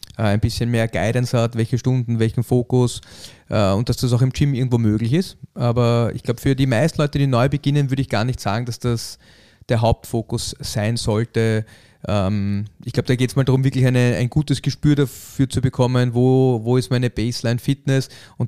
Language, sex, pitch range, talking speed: German, male, 115-130 Hz, 200 wpm